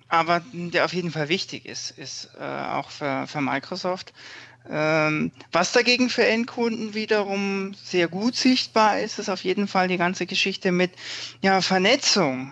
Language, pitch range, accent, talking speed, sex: German, 140-180 Hz, German, 155 wpm, male